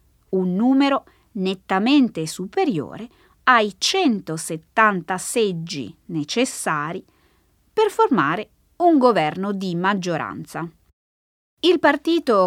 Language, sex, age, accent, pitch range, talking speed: Italian, female, 20-39, native, 170-275 Hz, 75 wpm